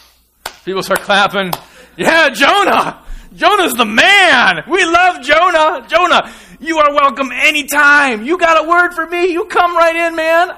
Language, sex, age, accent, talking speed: English, male, 30-49, American, 155 wpm